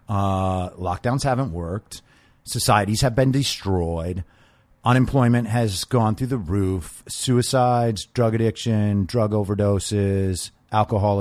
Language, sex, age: English, male, 30-49